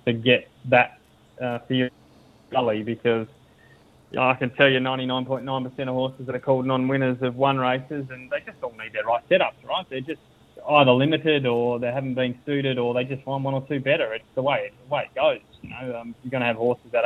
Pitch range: 120-135 Hz